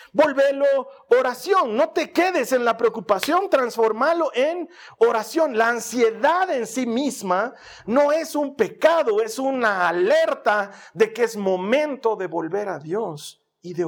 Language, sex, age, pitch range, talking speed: Spanish, male, 40-59, 185-280 Hz, 145 wpm